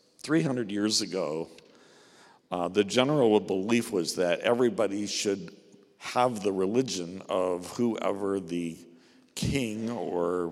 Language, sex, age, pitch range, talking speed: English, male, 60-79, 90-115 Hz, 110 wpm